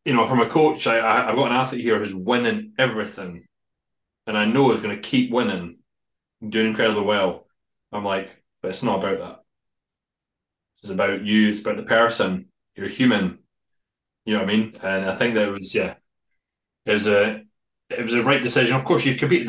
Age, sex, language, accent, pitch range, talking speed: 30-49, male, English, British, 95-115 Hz, 210 wpm